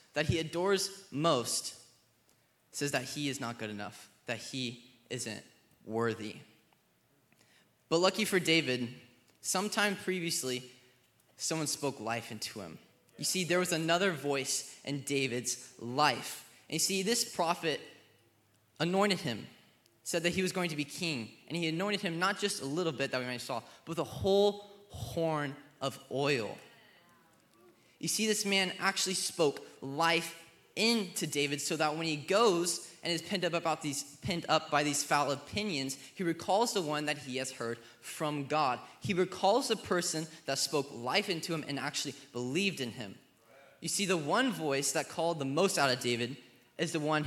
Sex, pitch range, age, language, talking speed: male, 125-170 Hz, 20-39, English, 170 wpm